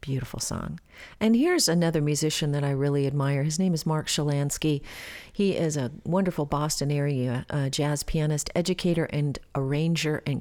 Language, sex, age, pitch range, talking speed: English, female, 40-59, 140-180 Hz, 160 wpm